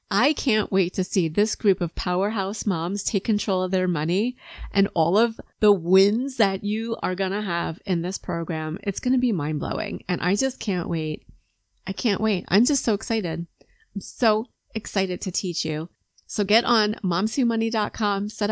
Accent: American